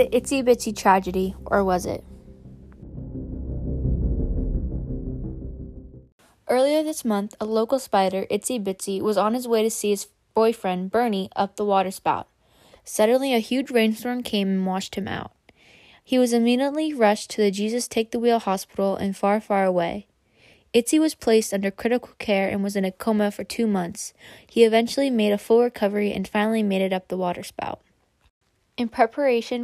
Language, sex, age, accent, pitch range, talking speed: English, female, 10-29, American, 195-230 Hz, 160 wpm